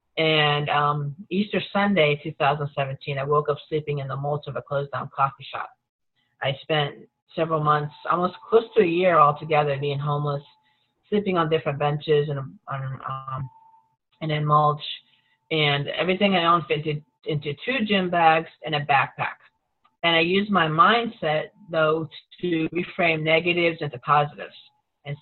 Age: 40-59